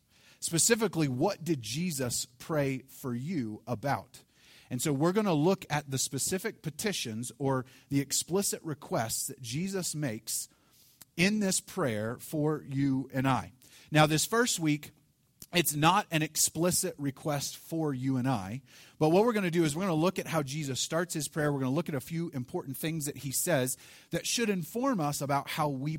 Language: English